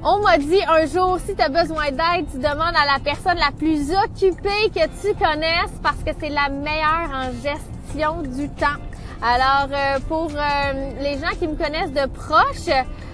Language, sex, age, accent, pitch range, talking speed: French, female, 20-39, Canadian, 260-330 Hz, 180 wpm